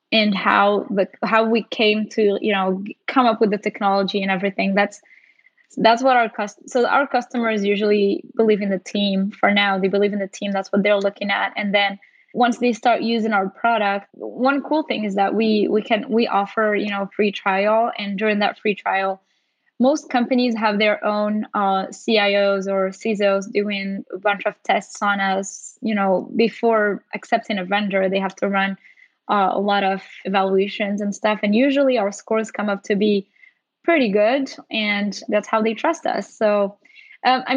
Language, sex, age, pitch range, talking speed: English, female, 10-29, 200-230 Hz, 190 wpm